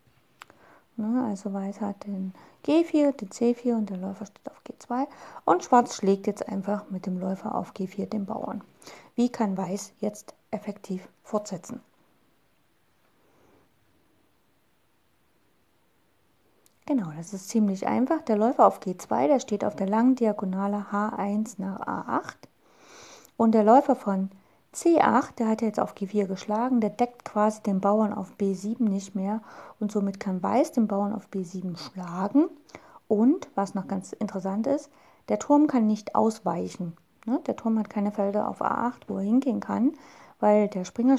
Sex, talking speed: female, 150 wpm